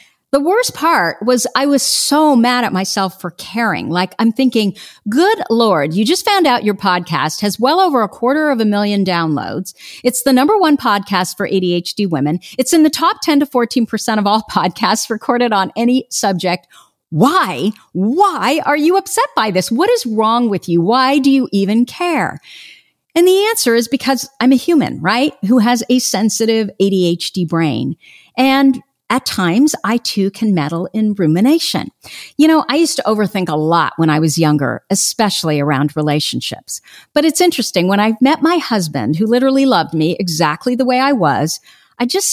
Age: 50-69